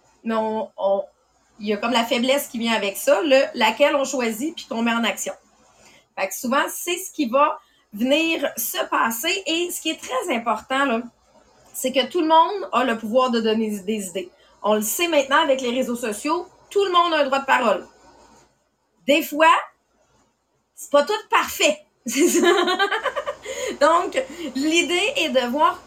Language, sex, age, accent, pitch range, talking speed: English, female, 30-49, Canadian, 240-320 Hz, 180 wpm